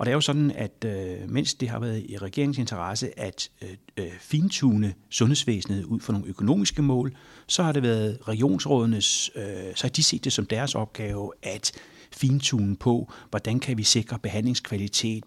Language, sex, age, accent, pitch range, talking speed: English, male, 60-79, Danish, 105-130 Hz, 160 wpm